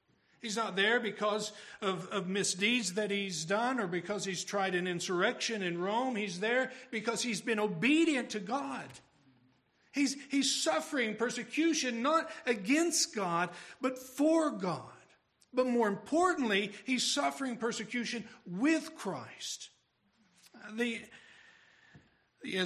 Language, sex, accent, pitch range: English, male, American, 180-245 Hz